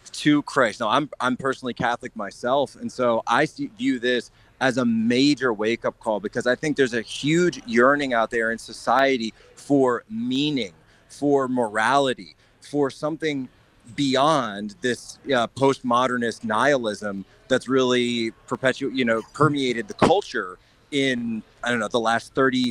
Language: English